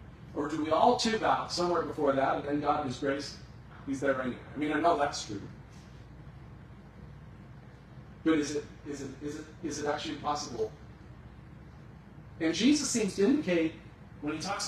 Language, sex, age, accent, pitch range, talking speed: English, male, 40-59, American, 130-160 Hz, 175 wpm